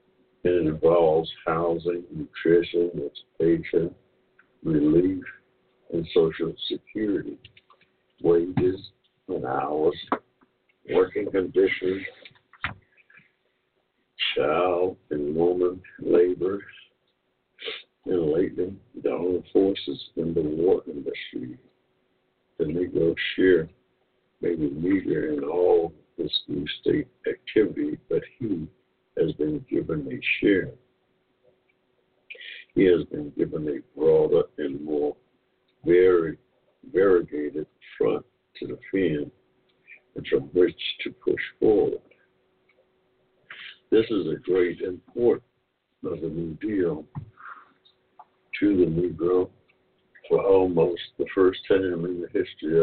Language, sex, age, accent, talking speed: English, male, 60-79, American, 95 wpm